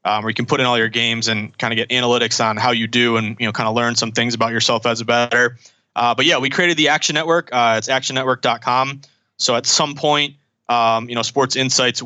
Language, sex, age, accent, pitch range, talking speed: English, male, 20-39, American, 115-135 Hz, 255 wpm